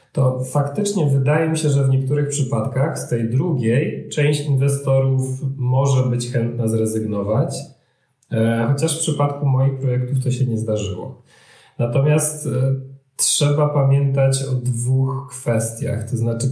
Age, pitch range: 40-59, 115-135 Hz